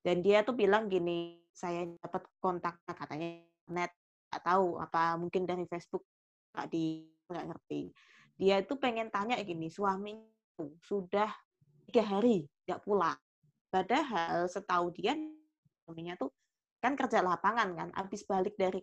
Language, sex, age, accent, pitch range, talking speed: Indonesian, female, 20-39, native, 170-205 Hz, 135 wpm